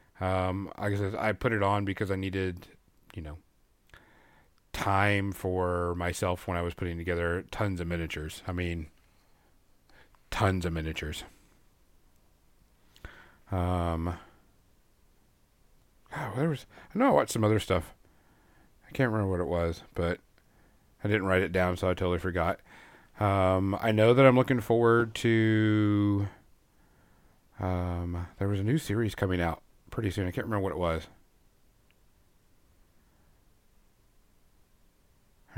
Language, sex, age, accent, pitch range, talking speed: English, male, 40-59, American, 90-110 Hz, 135 wpm